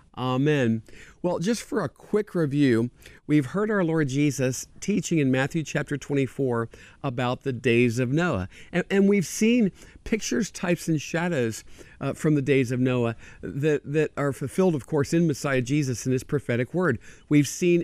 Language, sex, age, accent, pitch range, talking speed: English, male, 50-69, American, 120-155 Hz, 170 wpm